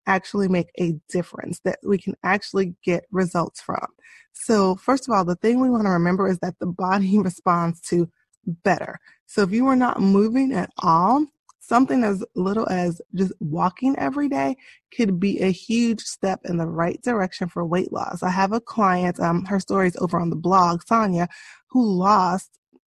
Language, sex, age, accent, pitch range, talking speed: English, female, 20-39, American, 175-210 Hz, 185 wpm